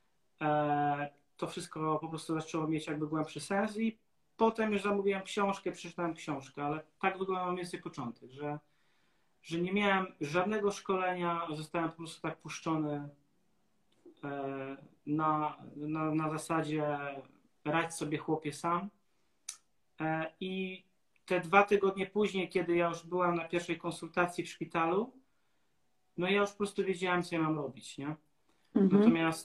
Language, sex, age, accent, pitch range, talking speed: Polish, male, 30-49, native, 150-175 Hz, 135 wpm